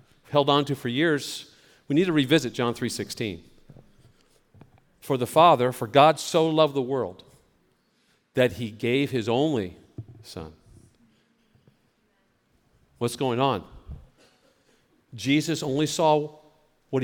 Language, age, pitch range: English, 50-69, 115-155 Hz